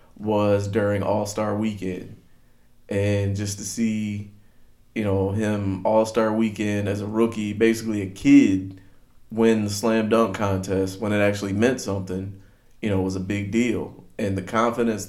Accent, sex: American, male